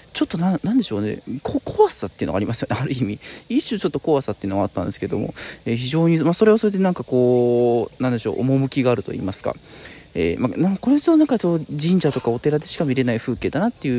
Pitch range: 120-170 Hz